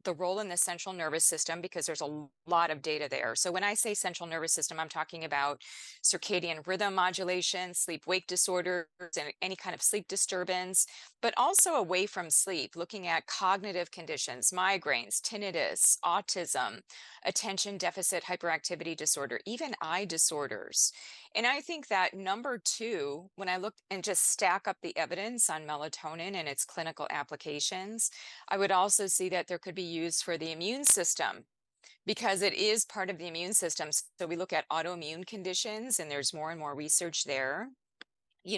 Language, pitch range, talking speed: English, 165-195 Hz, 170 wpm